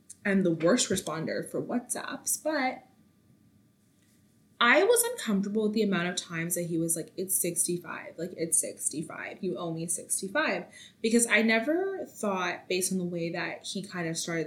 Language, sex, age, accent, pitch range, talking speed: English, female, 20-39, American, 175-225 Hz, 170 wpm